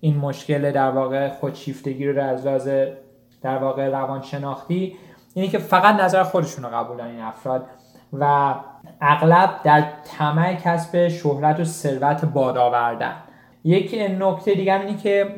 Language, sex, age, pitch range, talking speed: Persian, male, 20-39, 140-170 Hz, 135 wpm